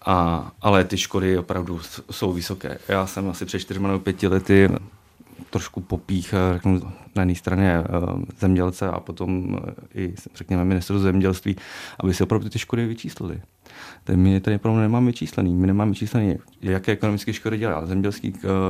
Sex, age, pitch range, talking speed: male, 30-49, 95-105 Hz, 150 wpm